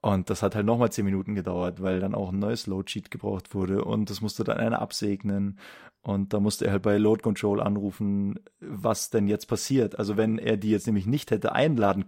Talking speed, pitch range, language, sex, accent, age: 225 wpm, 100-115 Hz, German, male, German, 30-49